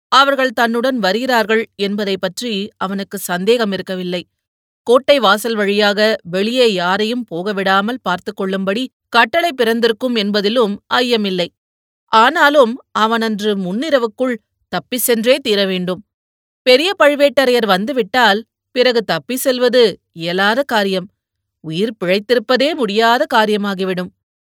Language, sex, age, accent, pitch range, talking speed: Tamil, female, 30-49, native, 190-255 Hz, 90 wpm